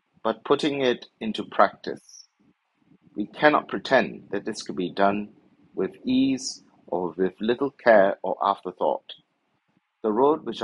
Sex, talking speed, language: male, 135 wpm, English